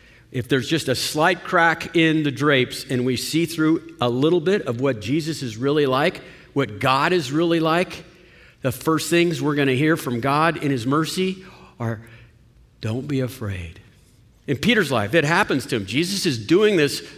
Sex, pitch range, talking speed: male, 120-180 Hz, 190 wpm